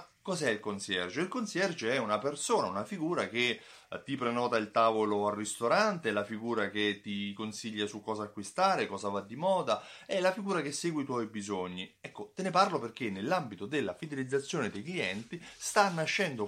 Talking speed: 180 wpm